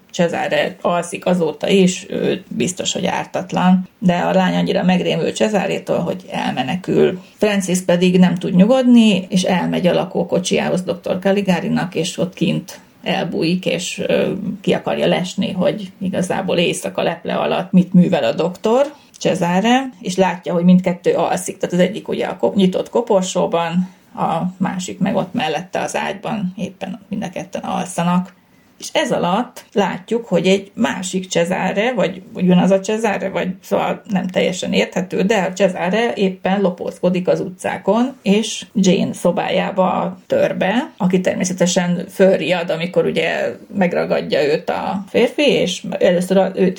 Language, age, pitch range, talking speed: Hungarian, 30-49, 180-200 Hz, 140 wpm